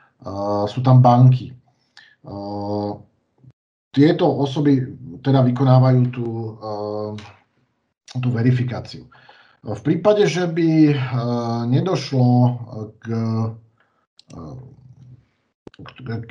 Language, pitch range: Slovak, 120-135 Hz